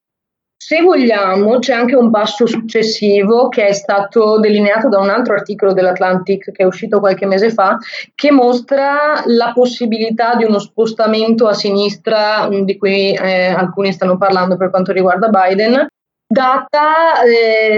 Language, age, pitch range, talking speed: Italian, 20-39, 200-240 Hz, 145 wpm